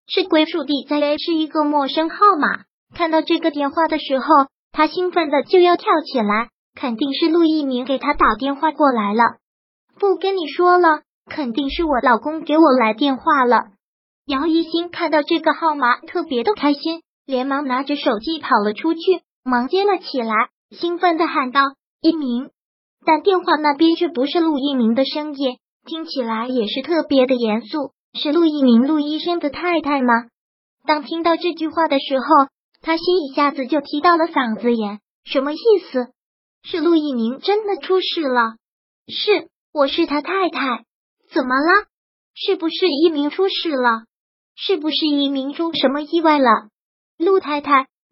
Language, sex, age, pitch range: Chinese, male, 20-39, 270-335 Hz